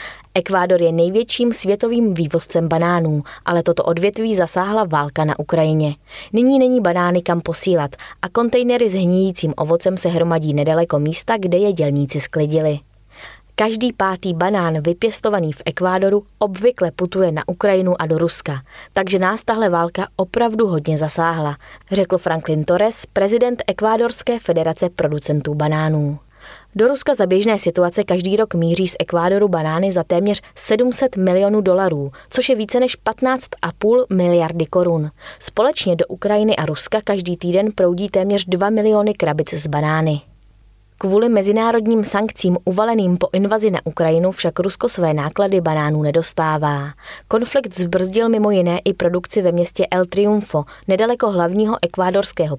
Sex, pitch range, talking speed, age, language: female, 160-210 Hz, 140 wpm, 20-39, Czech